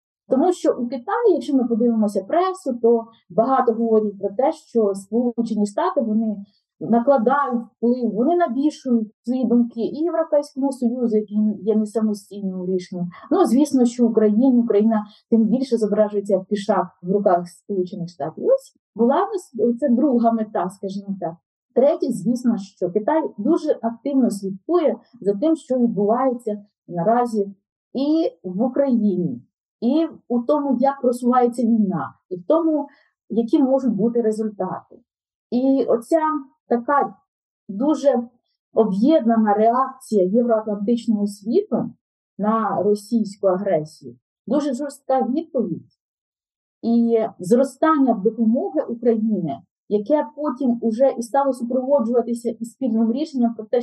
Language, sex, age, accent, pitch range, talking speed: Ukrainian, female, 20-39, native, 210-270 Hz, 120 wpm